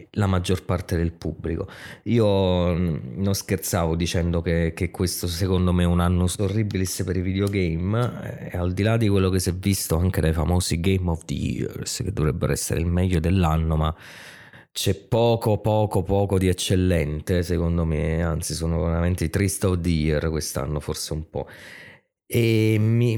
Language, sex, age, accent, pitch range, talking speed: Italian, male, 20-39, native, 85-100 Hz, 175 wpm